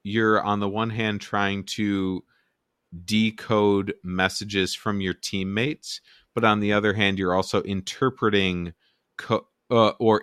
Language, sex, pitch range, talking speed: English, male, 85-105 Hz, 135 wpm